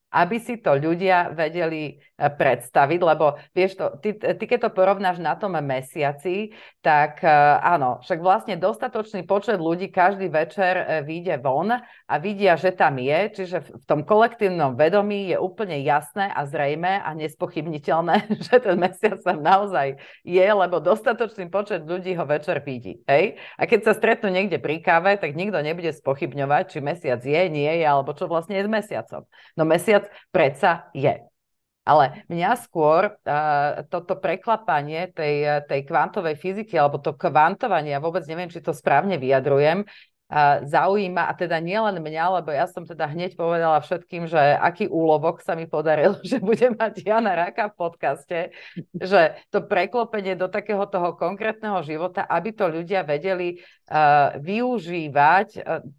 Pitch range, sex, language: 155-195 Hz, female, Slovak